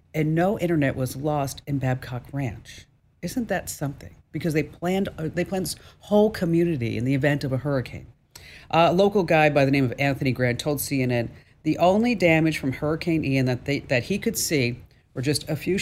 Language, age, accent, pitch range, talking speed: English, 50-69, American, 130-170 Hz, 195 wpm